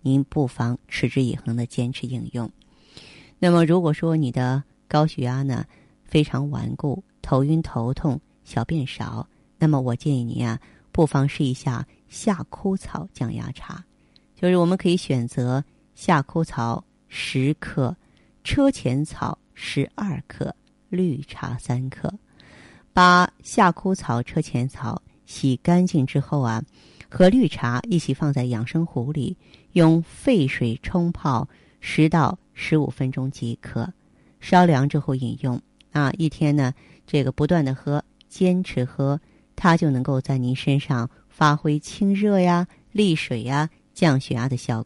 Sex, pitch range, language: female, 130-165 Hz, Chinese